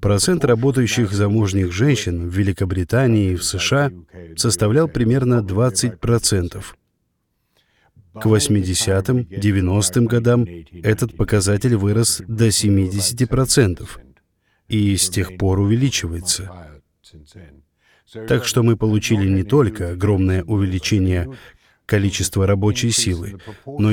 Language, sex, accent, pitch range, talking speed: Russian, male, native, 95-115 Hz, 95 wpm